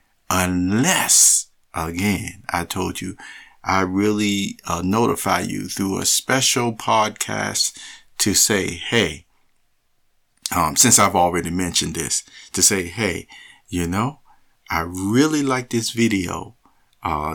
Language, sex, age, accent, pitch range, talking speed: English, male, 50-69, American, 90-115 Hz, 120 wpm